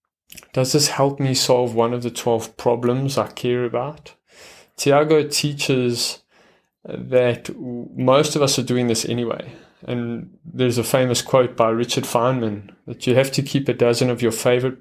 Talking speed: 165 wpm